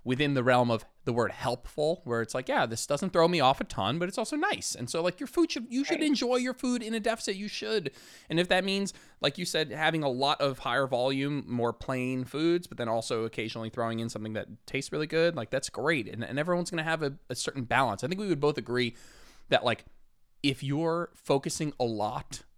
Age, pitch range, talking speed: 20-39, 115-155 Hz, 240 wpm